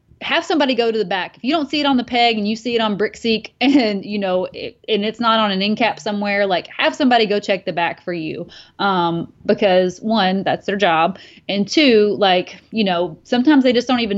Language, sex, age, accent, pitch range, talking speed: English, female, 20-39, American, 185-225 Hz, 240 wpm